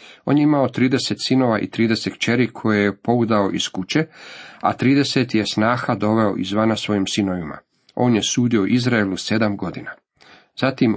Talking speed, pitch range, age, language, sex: 155 wpm, 105-125 Hz, 40-59, Croatian, male